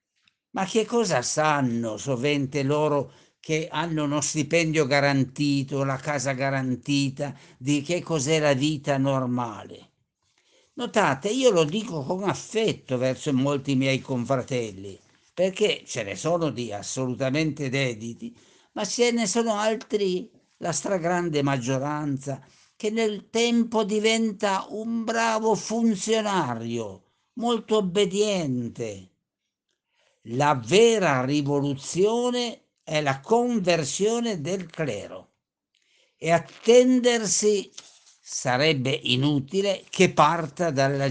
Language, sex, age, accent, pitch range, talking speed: Italian, male, 60-79, native, 135-200 Hz, 100 wpm